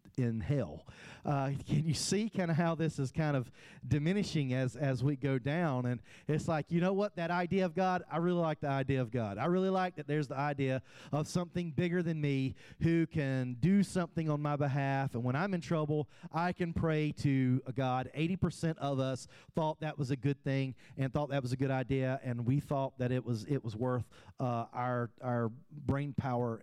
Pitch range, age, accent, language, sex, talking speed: 125-160 Hz, 40-59, American, English, male, 215 wpm